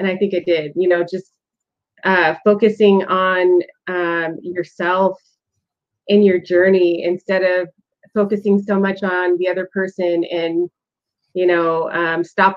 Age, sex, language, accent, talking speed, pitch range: 30-49, female, English, American, 145 wpm, 175-200 Hz